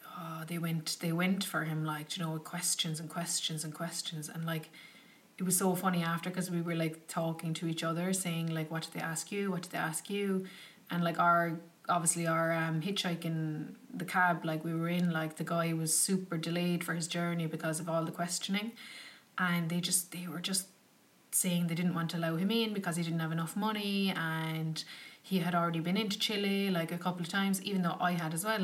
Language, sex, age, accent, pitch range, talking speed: English, female, 30-49, Irish, 165-190 Hz, 230 wpm